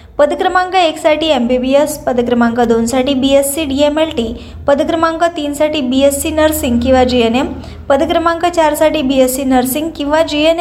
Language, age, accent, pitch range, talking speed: Marathi, 20-39, native, 260-310 Hz, 130 wpm